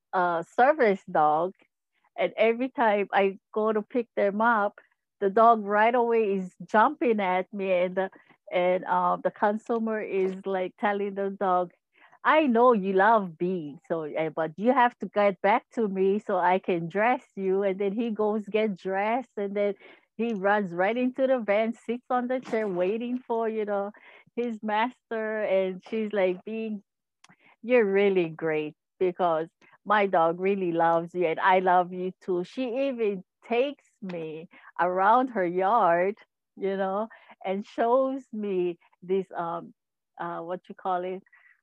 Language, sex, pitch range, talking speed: English, female, 180-230 Hz, 160 wpm